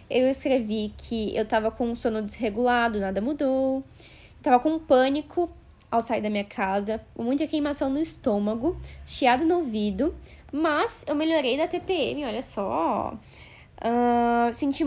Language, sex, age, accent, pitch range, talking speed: Portuguese, female, 10-29, Brazilian, 225-275 Hz, 135 wpm